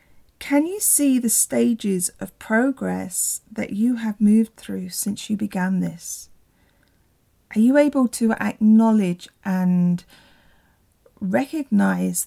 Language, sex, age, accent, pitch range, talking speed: English, female, 40-59, British, 195-245 Hz, 110 wpm